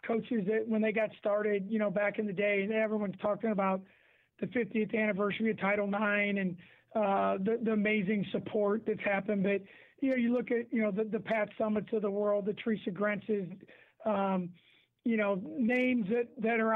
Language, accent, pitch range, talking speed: English, American, 215-245 Hz, 195 wpm